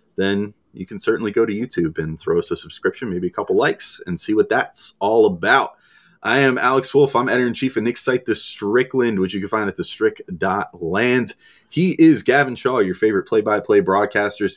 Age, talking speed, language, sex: 30-49, 195 wpm, English, male